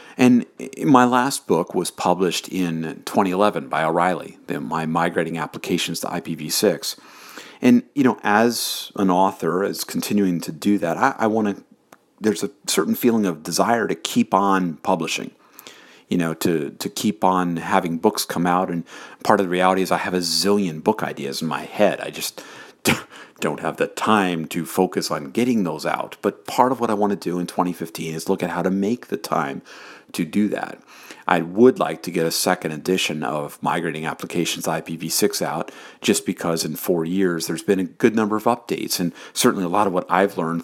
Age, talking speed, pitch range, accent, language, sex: 50-69, 195 wpm, 85-100 Hz, American, English, male